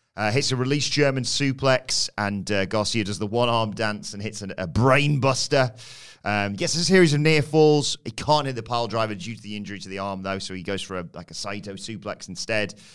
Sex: male